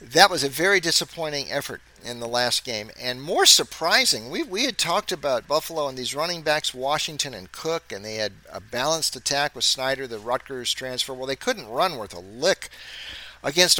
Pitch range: 115-150 Hz